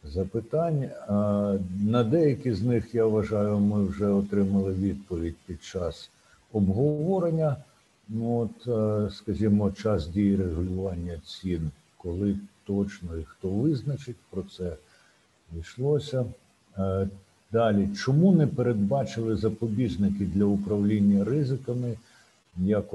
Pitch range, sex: 95-110 Hz, male